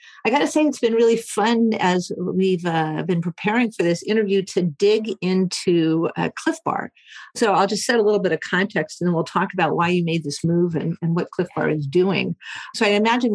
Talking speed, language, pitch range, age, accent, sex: 230 wpm, English, 170-205 Hz, 50-69, American, female